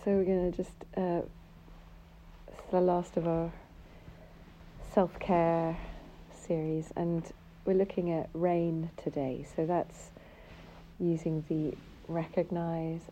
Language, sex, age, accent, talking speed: English, female, 40-59, British, 105 wpm